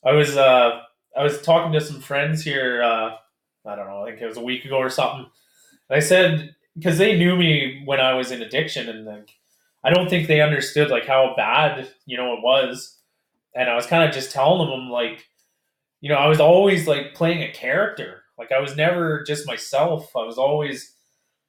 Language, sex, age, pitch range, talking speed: English, male, 20-39, 135-175 Hz, 210 wpm